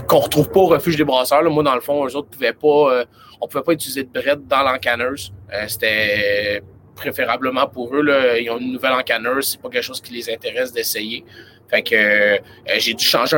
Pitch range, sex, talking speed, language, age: 110-140 Hz, male, 235 wpm, French, 30-49